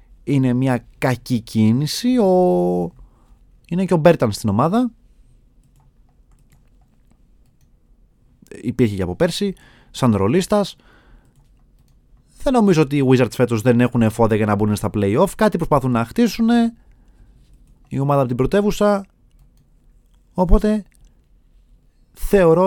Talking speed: 110 wpm